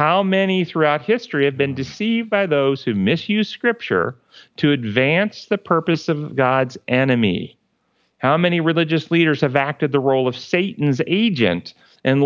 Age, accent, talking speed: 40-59, American, 150 wpm